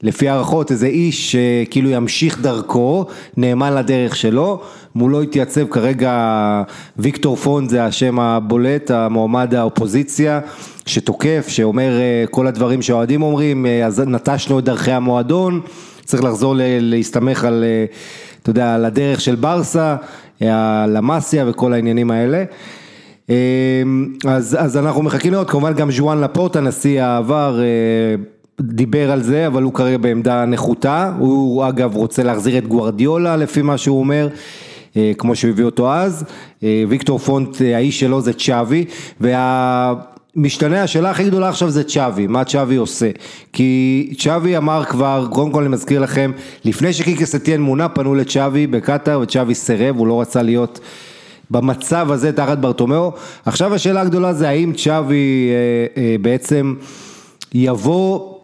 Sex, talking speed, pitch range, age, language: male, 130 wpm, 120-150 Hz, 30-49, Hebrew